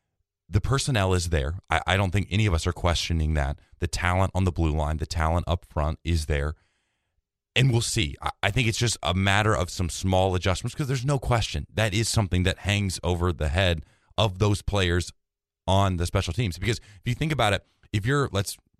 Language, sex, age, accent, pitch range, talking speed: English, male, 30-49, American, 85-105 Hz, 215 wpm